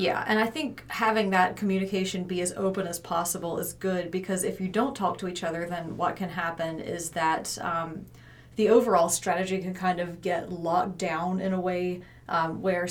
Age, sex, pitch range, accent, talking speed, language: 30-49, female, 165-190 Hz, American, 200 wpm, English